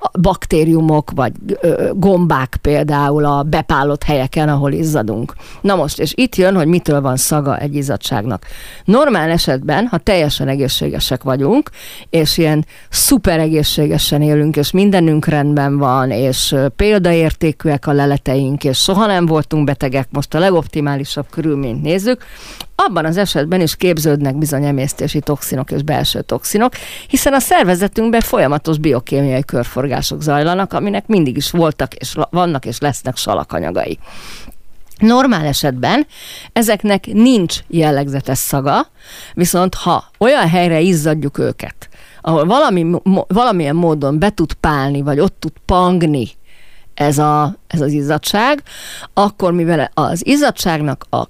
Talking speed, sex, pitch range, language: 125 wpm, female, 140-185 Hz, Hungarian